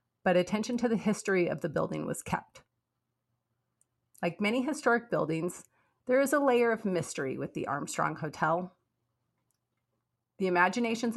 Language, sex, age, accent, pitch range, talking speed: English, female, 30-49, American, 160-205 Hz, 140 wpm